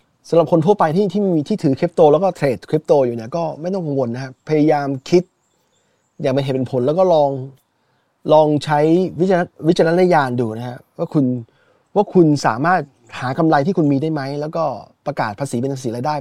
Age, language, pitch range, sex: 20-39, Thai, 125-160 Hz, male